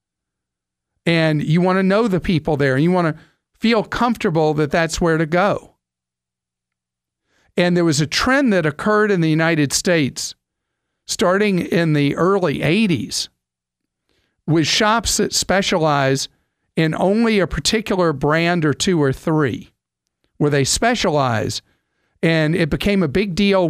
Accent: American